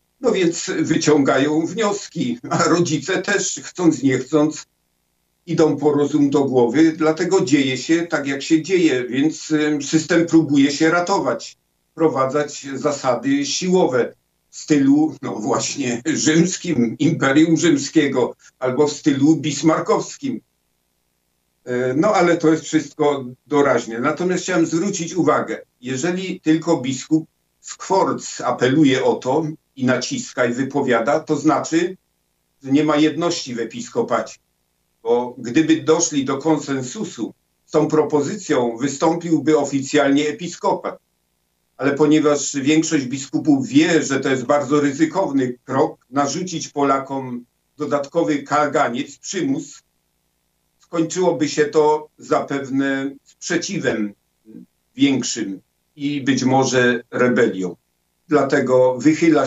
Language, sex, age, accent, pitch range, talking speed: Polish, male, 50-69, native, 125-155 Hz, 110 wpm